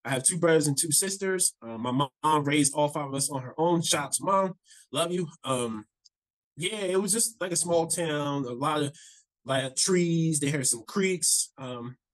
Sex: male